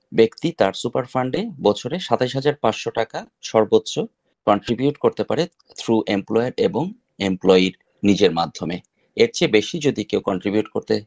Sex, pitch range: male, 105-140 Hz